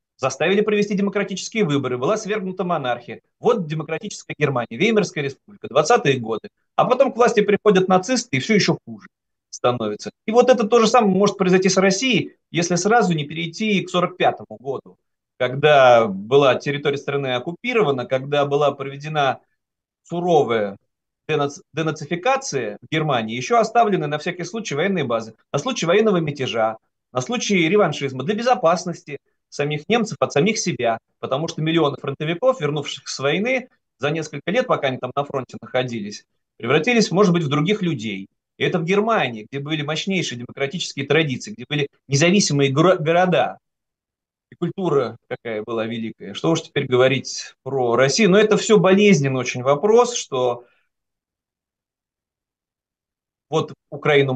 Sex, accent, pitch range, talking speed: male, native, 135-205 Hz, 145 wpm